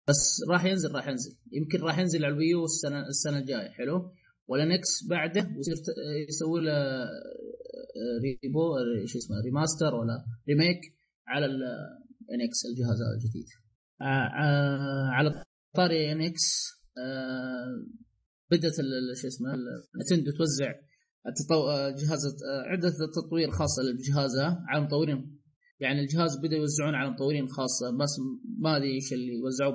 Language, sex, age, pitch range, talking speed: Arabic, male, 20-39, 135-165 Hz, 115 wpm